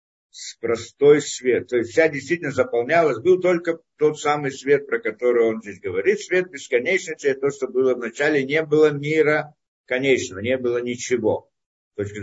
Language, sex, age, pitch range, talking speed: Russian, male, 50-69, 120-155 Hz, 160 wpm